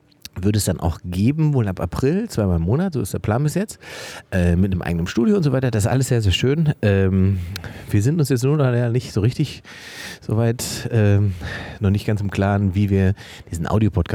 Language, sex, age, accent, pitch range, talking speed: German, male, 40-59, German, 90-120 Hz, 220 wpm